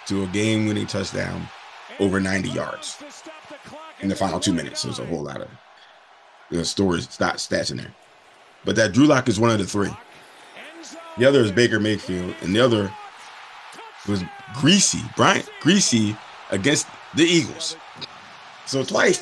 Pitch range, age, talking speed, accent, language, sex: 100-140 Hz, 30-49, 155 wpm, American, English, male